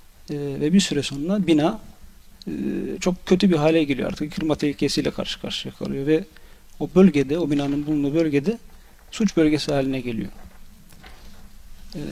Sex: male